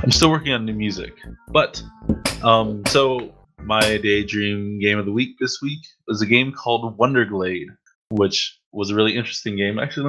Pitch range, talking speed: 100-130 Hz, 175 wpm